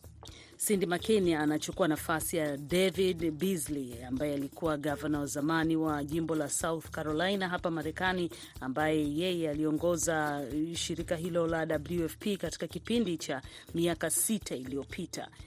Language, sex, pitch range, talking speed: Swahili, female, 145-165 Hz, 120 wpm